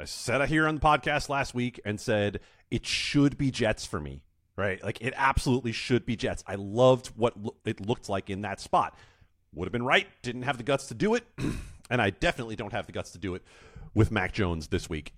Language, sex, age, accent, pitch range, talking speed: English, male, 30-49, American, 100-140 Hz, 235 wpm